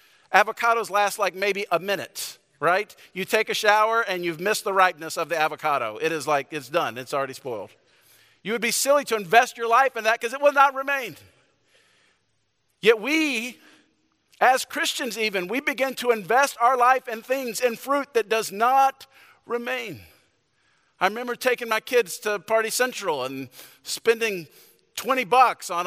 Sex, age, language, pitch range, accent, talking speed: male, 50-69, English, 165-240 Hz, American, 170 wpm